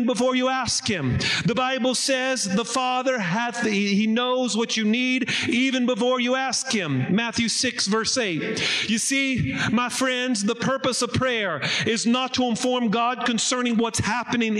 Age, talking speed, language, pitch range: 40-59, 165 wpm, English, 210-250 Hz